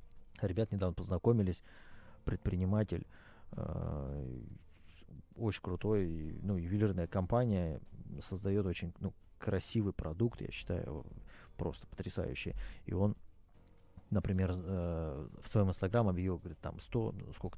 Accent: native